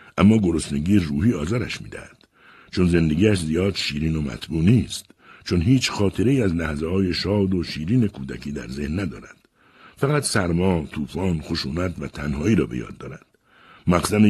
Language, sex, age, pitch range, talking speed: Persian, male, 60-79, 75-100 Hz, 155 wpm